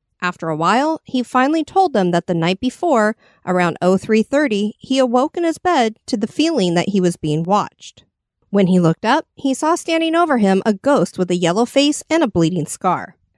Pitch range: 185-280 Hz